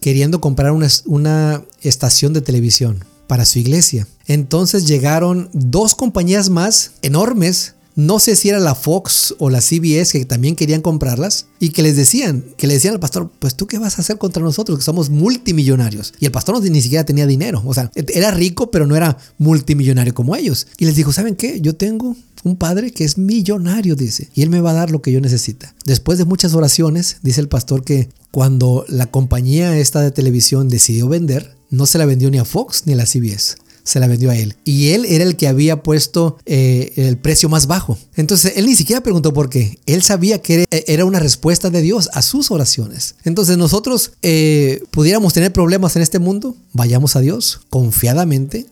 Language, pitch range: Spanish, 135-180 Hz